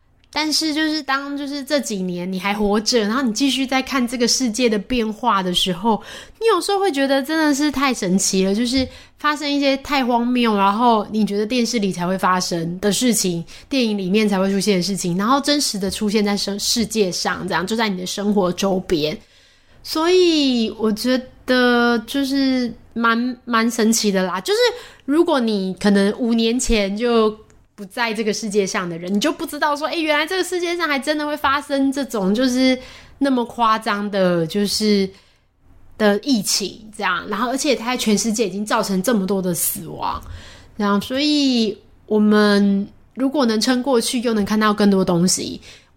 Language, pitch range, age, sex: Chinese, 200-270 Hz, 20-39, female